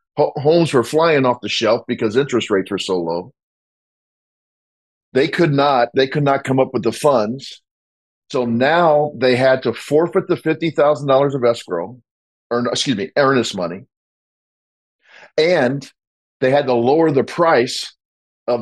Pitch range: 115-140 Hz